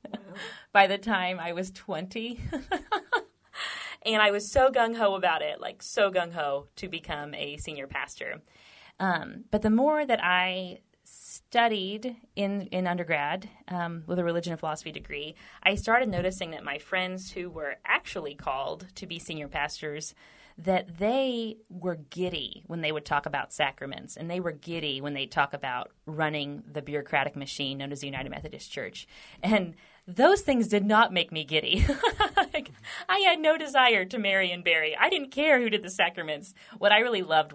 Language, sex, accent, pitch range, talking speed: English, female, American, 155-210 Hz, 175 wpm